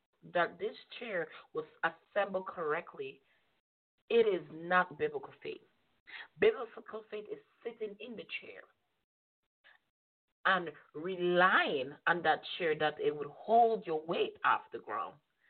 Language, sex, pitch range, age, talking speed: English, female, 170-275 Hz, 30-49, 125 wpm